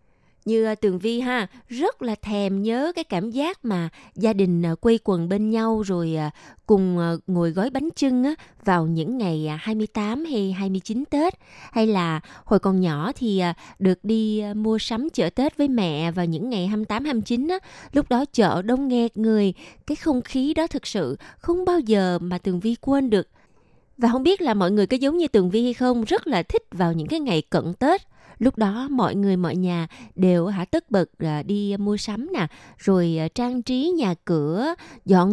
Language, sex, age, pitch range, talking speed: Vietnamese, female, 20-39, 185-260 Hz, 190 wpm